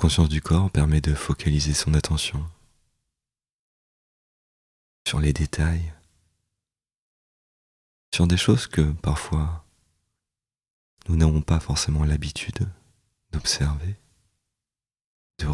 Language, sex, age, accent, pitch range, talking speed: French, male, 30-49, French, 75-90 Hz, 95 wpm